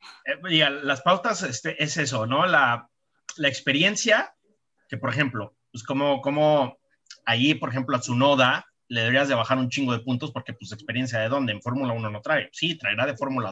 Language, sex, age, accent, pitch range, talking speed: Spanish, male, 30-49, Mexican, 120-150 Hz, 190 wpm